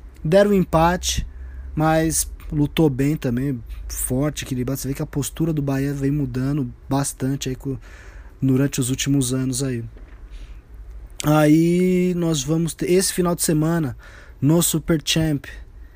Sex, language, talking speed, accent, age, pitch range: male, Portuguese, 130 wpm, Brazilian, 20-39, 130-165 Hz